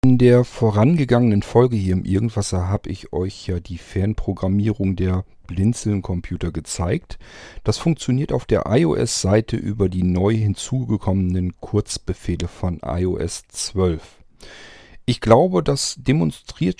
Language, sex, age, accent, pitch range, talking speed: German, male, 40-59, German, 95-125 Hz, 120 wpm